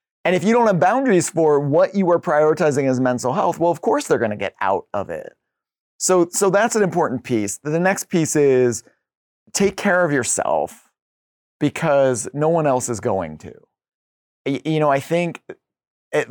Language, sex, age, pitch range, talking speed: English, male, 30-49, 120-155 Hz, 185 wpm